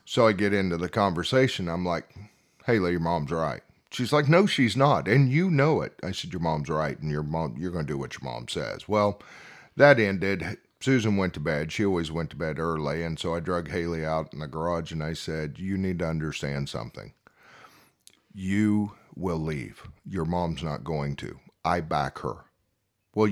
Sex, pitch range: male, 85-110 Hz